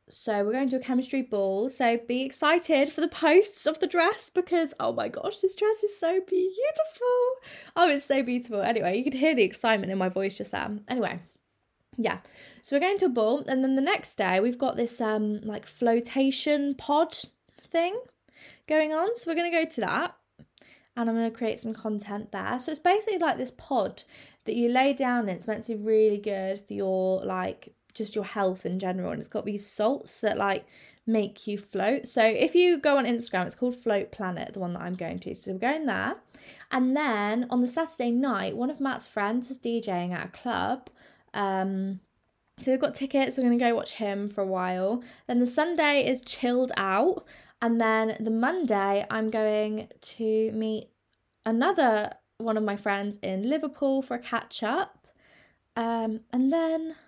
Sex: female